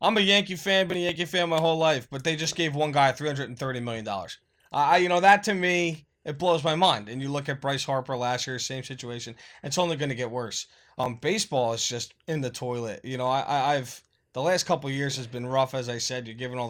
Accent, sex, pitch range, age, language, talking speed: American, male, 135-200 Hz, 20-39, English, 250 wpm